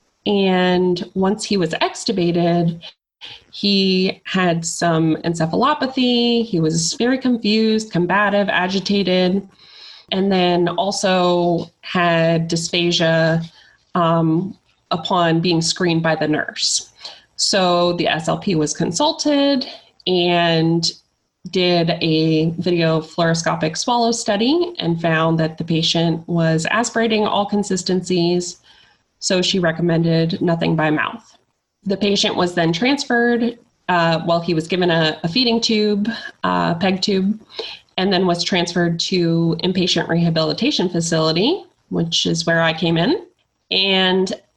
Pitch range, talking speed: 170-215 Hz, 115 wpm